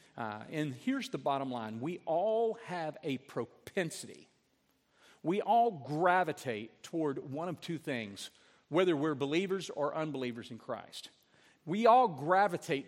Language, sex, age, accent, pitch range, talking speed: English, male, 50-69, American, 140-185 Hz, 135 wpm